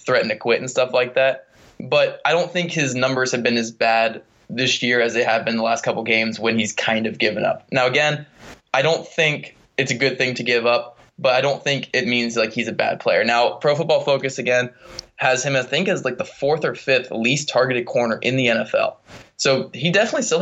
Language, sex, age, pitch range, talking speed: English, male, 20-39, 115-135 Hz, 240 wpm